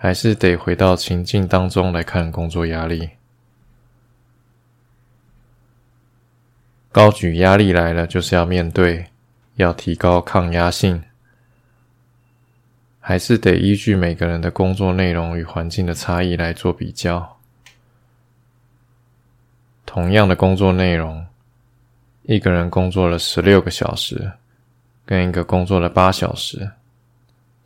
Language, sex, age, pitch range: Chinese, male, 20-39, 90-120 Hz